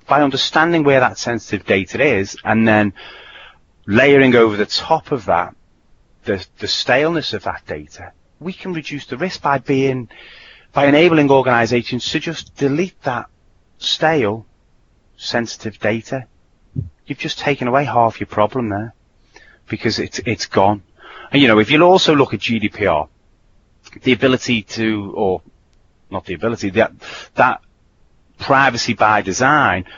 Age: 30-49